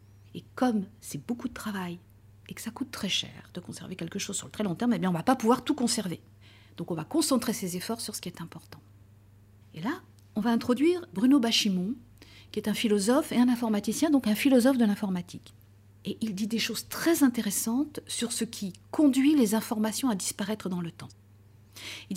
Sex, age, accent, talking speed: female, 50-69, French, 215 wpm